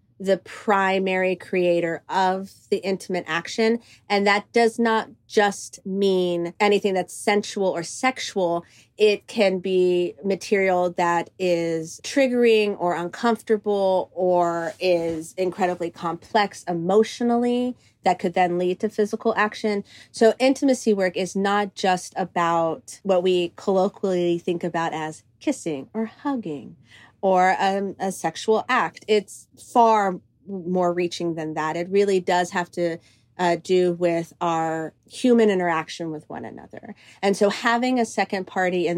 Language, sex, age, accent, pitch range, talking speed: English, female, 30-49, American, 170-205 Hz, 135 wpm